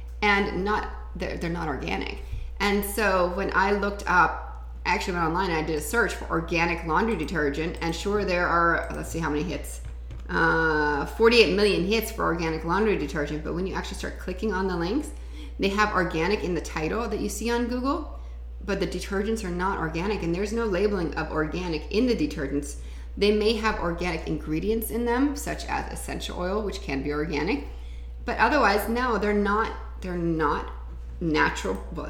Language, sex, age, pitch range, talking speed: English, female, 30-49, 145-200 Hz, 185 wpm